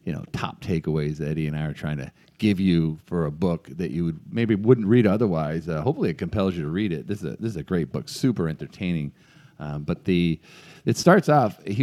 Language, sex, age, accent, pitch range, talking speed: English, male, 40-59, American, 85-110 Hz, 240 wpm